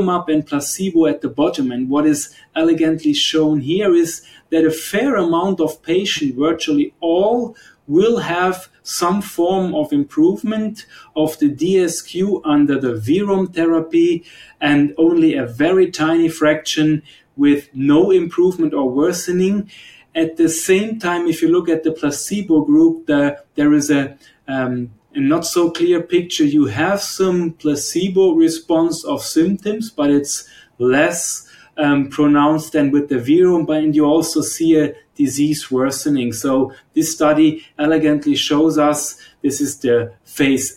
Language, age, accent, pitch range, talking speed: English, 30-49, German, 145-180 Hz, 145 wpm